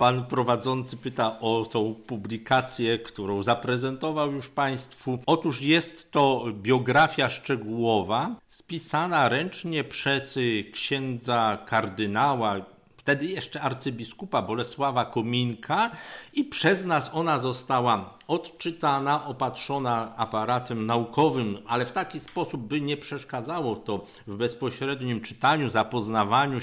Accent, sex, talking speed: native, male, 105 wpm